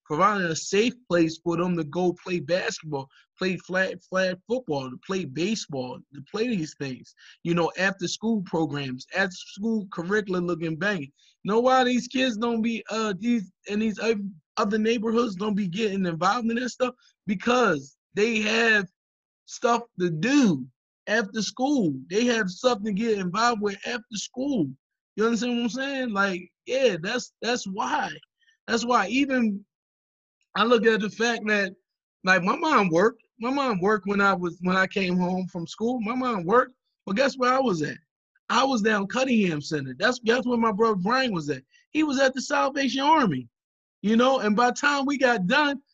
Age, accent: 20-39, American